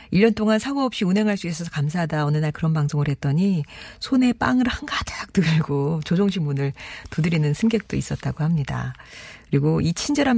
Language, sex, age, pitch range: Korean, female, 40-59, 145-220 Hz